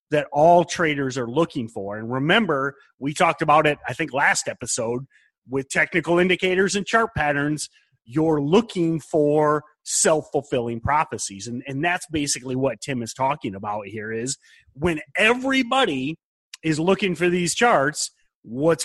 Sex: male